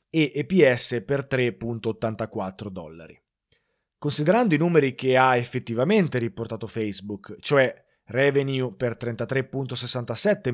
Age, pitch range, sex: 30-49, 120-160 Hz, male